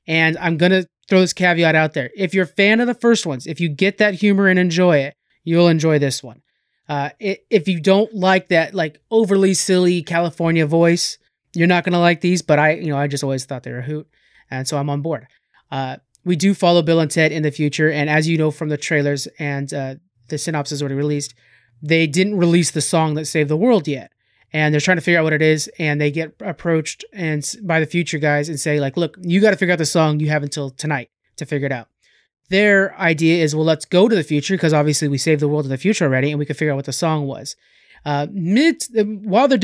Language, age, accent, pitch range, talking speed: English, 30-49, American, 150-180 Hz, 250 wpm